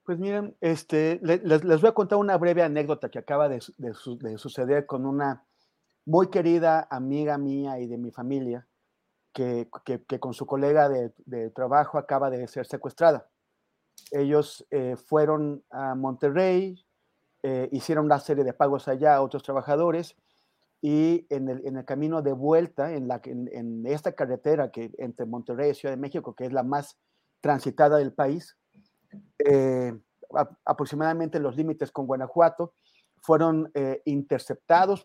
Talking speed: 160 wpm